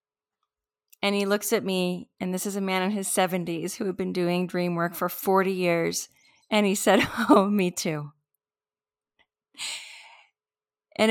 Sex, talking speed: female, 155 wpm